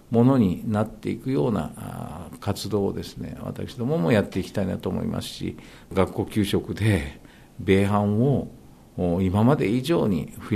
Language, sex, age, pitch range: Japanese, male, 50-69, 100-140 Hz